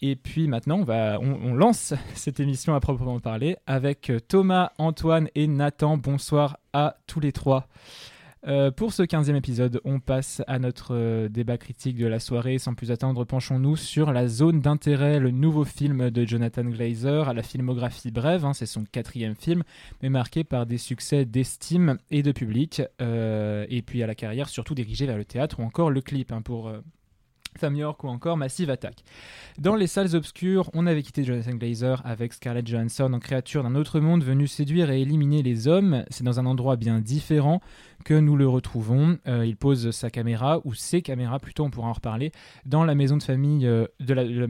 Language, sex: French, male